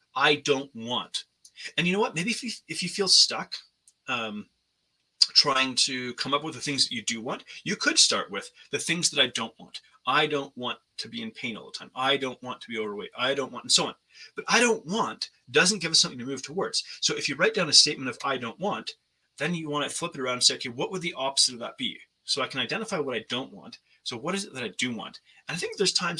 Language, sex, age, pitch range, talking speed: English, male, 30-49, 130-200 Hz, 270 wpm